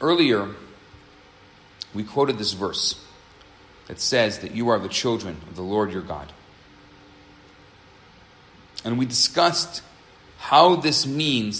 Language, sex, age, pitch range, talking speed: English, male, 40-59, 100-160 Hz, 120 wpm